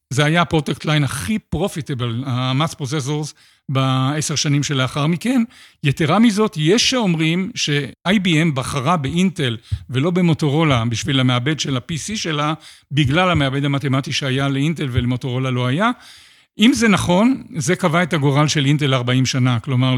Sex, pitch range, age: male, 135-175 Hz, 50-69